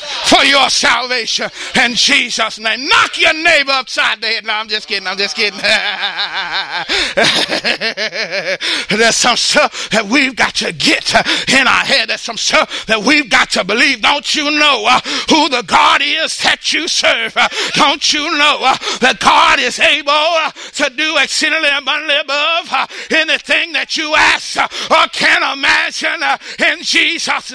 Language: English